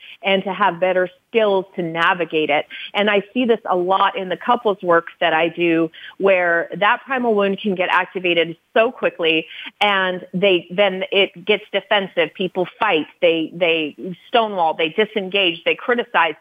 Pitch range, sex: 180-220 Hz, female